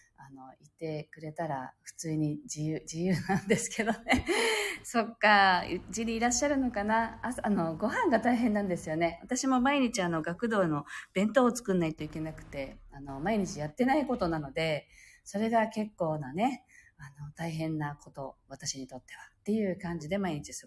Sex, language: female, Japanese